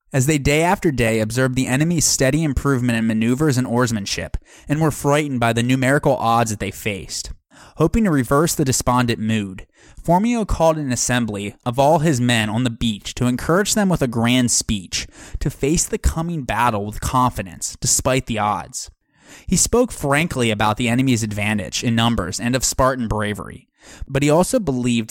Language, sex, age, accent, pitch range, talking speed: English, male, 20-39, American, 115-155 Hz, 180 wpm